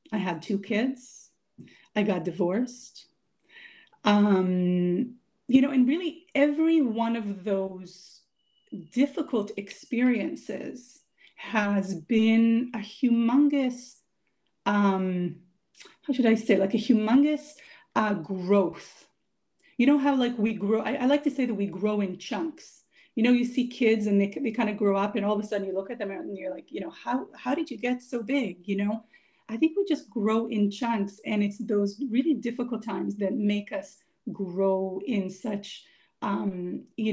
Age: 30-49